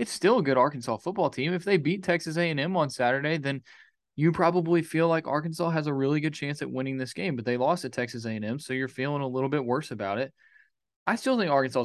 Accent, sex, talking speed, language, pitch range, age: American, male, 245 wpm, English, 120-150 Hz, 20-39